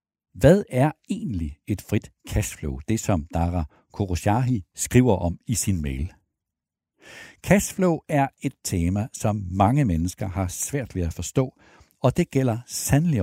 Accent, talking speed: native, 140 wpm